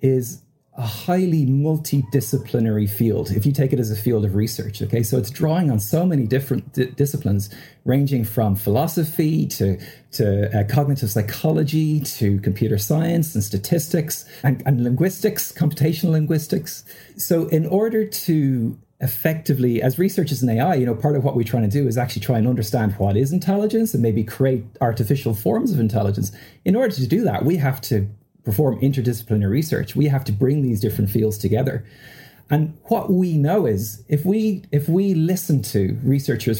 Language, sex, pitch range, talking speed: English, male, 110-150 Hz, 175 wpm